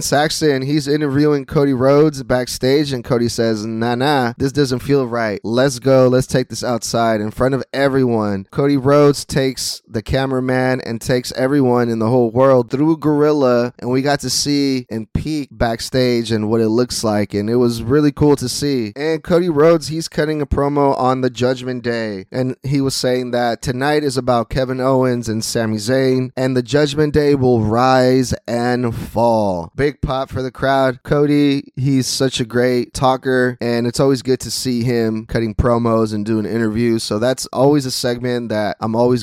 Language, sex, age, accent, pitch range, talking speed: English, male, 20-39, American, 120-140 Hz, 185 wpm